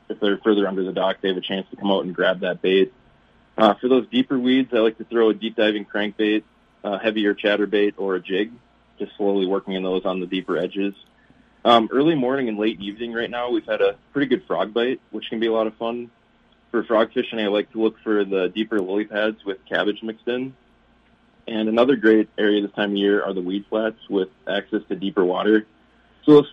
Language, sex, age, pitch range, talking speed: English, male, 20-39, 100-115 Hz, 230 wpm